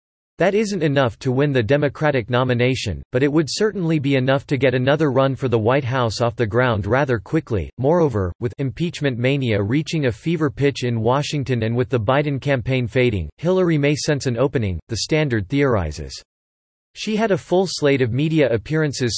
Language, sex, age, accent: English, male, 40-59, American